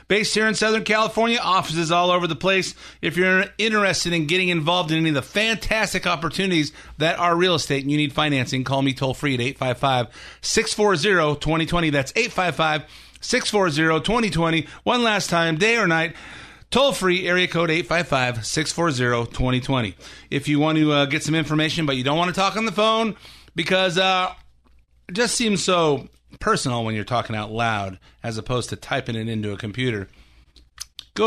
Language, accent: English, American